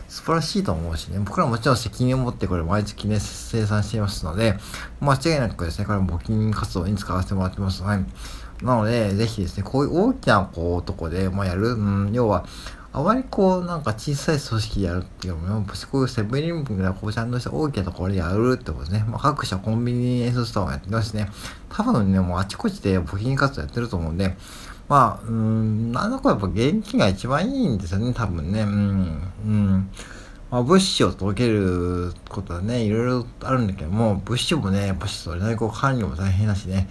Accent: native